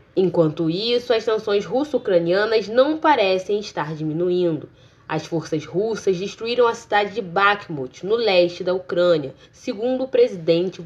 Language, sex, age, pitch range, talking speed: Portuguese, female, 10-29, 175-240 Hz, 135 wpm